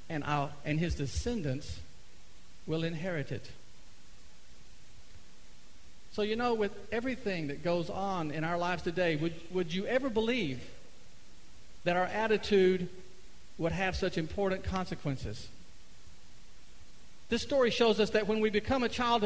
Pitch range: 140-220 Hz